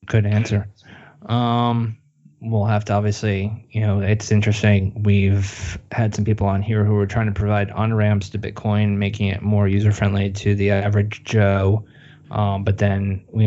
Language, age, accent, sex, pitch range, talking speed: English, 20-39, American, male, 100-110 Hz, 175 wpm